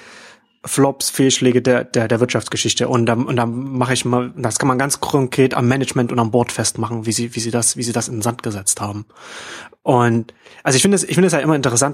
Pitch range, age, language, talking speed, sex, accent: 120-140 Hz, 30-49, German, 245 wpm, male, German